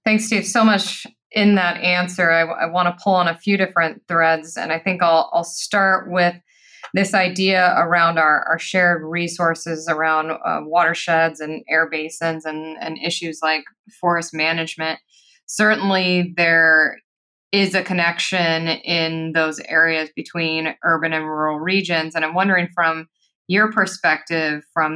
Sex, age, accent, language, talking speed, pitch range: female, 20-39, American, English, 150 wpm, 160-180 Hz